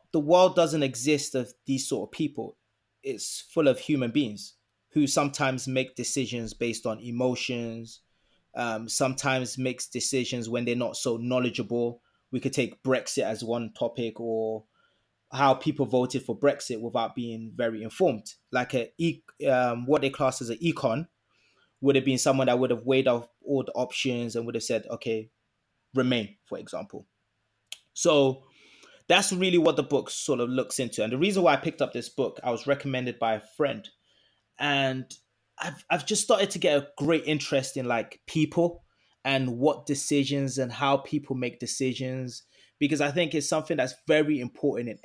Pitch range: 120-145 Hz